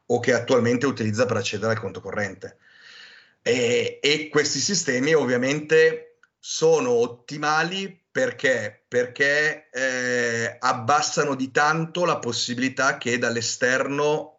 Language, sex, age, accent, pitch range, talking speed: Italian, male, 30-49, native, 115-150 Hz, 110 wpm